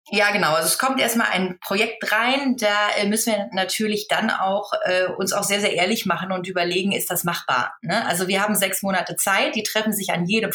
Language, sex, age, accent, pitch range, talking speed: German, female, 20-39, German, 195-245 Hz, 230 wpm